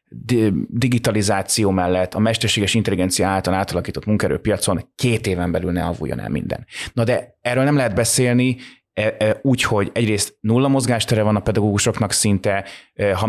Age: 20-39